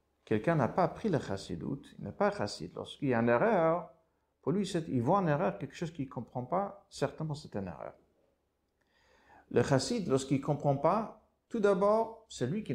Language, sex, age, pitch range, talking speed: French, male, 50-69, 120-195 Hz, 205 wpm